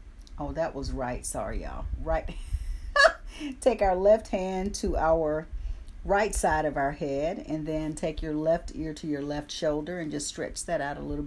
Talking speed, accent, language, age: 185 wpm, American, English, 50-69